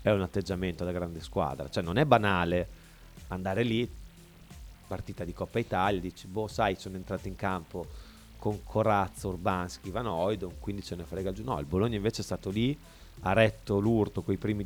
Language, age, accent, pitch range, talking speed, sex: Italian, 30-49, native, 85-110 Hz, 180 wpm, male